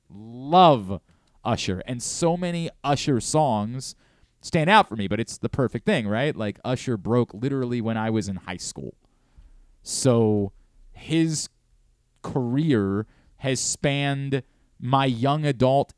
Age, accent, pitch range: 30-49, American, 110-145 Hz